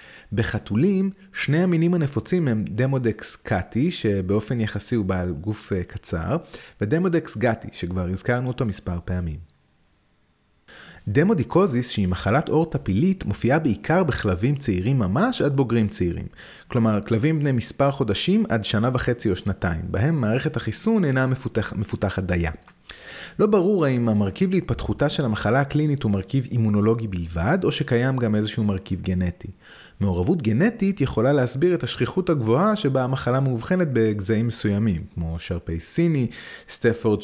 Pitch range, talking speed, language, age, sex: 100-140 Hz, 135 wpm, Hebrew, 30-49, male